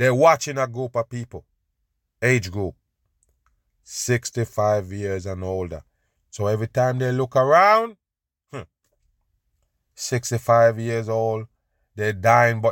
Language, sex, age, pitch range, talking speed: English, male, 30-49, 90-120 Hz, 115 wpm